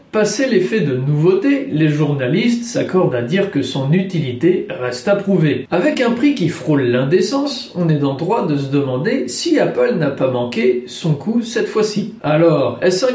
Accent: French